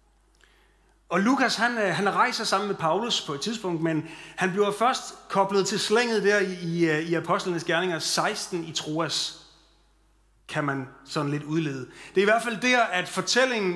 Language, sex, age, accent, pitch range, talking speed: Danish, male, 30-49, native, 155-200 Hz, 175 wpm